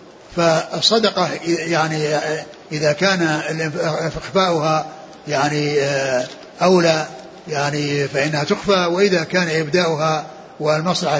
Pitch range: 155-180 Hz